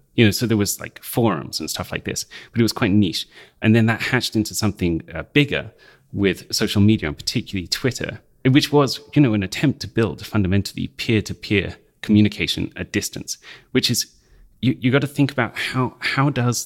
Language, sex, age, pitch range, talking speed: English, male, 30-49, 95-125 Hz, 195 wpm